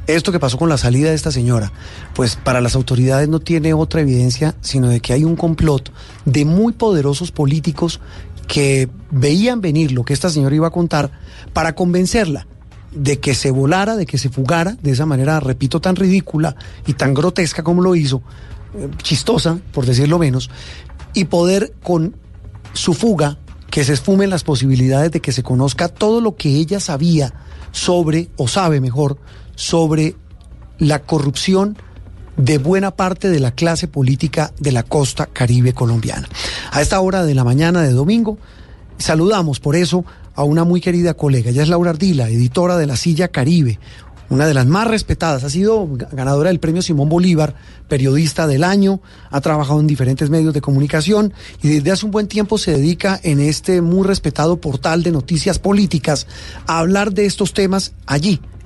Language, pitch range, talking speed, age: Spanish, 130-175 Hz, 175 wpm, 30-49